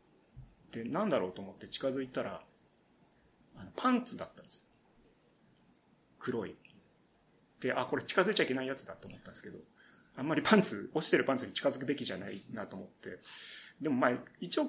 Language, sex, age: Japanese, male, 30-49